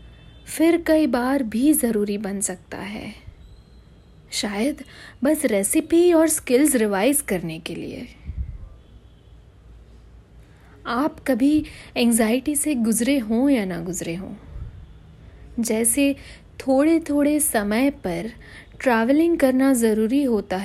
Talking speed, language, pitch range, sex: 105 wpm, Hindi, 205-275 Hz, female